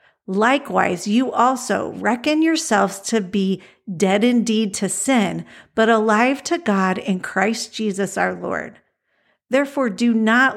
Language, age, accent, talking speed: English, 50-69, American, 130 wpm